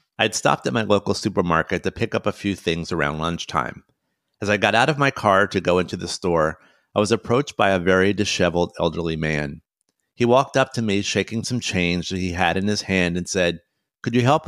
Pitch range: 90-110 Hz